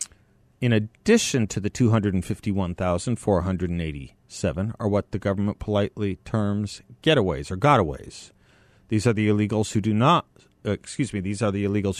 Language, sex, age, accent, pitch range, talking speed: English, male, 40-59, American, 100-120 Hz, 140 wpm